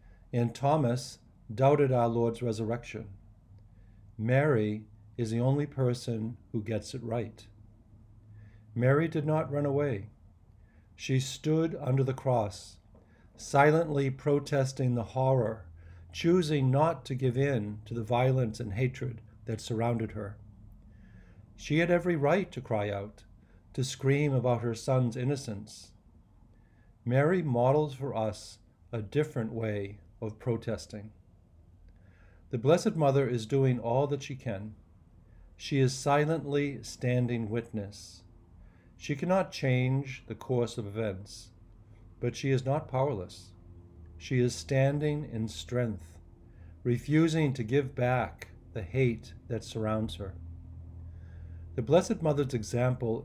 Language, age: English, 50-69